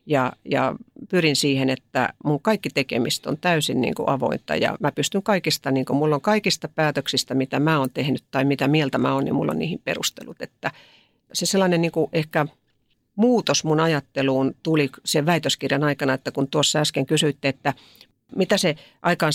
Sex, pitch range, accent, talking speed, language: female, 135-160 Hz, native, 175 wpm, Finnish